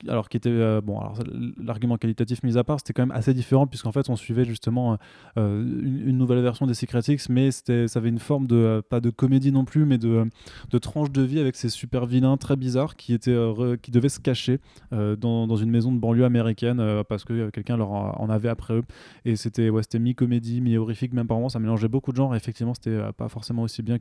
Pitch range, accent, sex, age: 115-130 Hz, French, male, 20-39